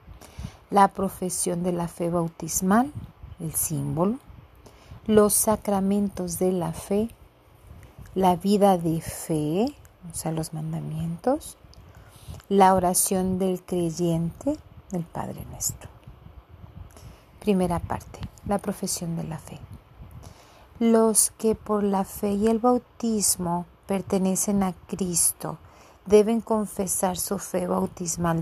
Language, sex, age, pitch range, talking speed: Spanish, female, 40-59, 170-200 Hz, 110 wpm